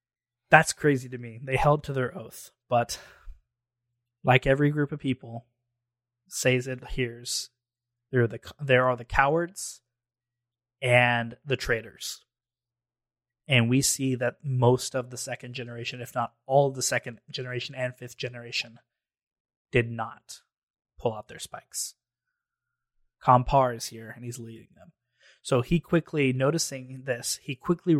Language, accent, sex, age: English, American, male, 20-39